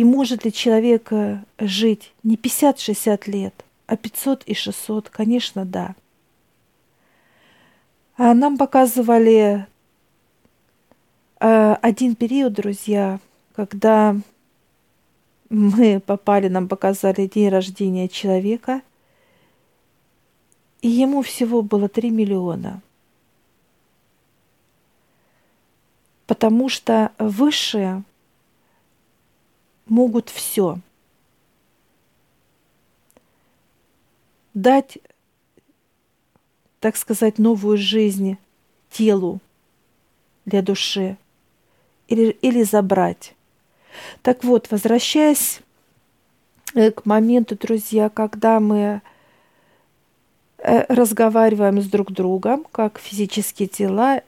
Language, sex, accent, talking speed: Russian, female, native, 70 wpm